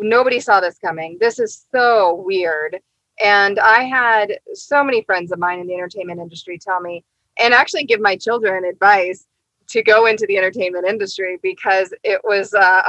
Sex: female